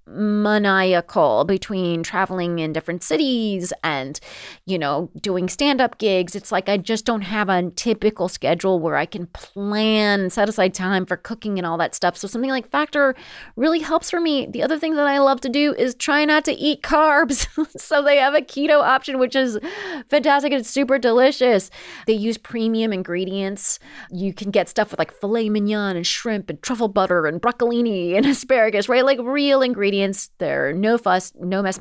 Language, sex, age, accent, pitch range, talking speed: English, female, 30-49, American, 180-240 Hz, 180 wpm